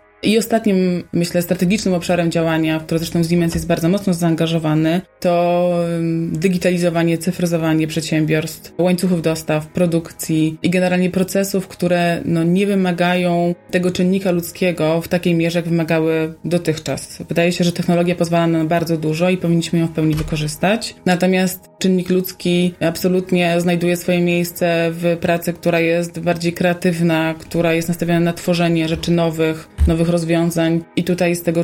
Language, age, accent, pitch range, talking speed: Polish, 20-39, native, 165-180 Hz, 145 wpm